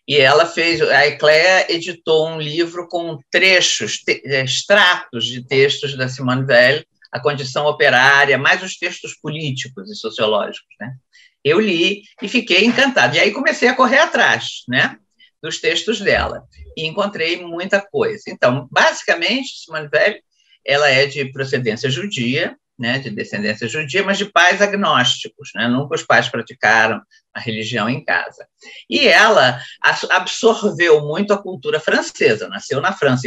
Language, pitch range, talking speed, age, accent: Portuguese, 135-210 Hz, 145 wpm, 50-69, Brazilian